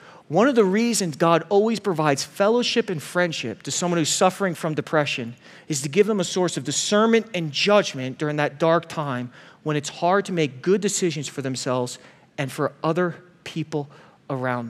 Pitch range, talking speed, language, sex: 150-205 Hz, 180 wpm, English, male